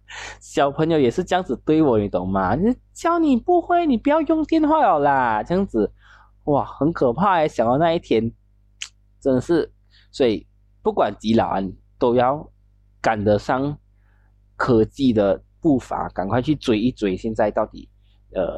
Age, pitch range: 20-39, 100-135 Hz